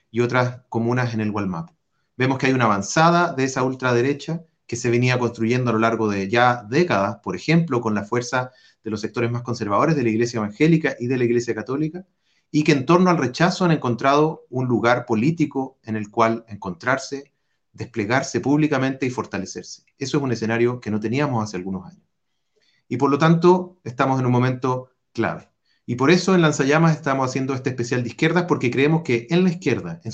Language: Spanish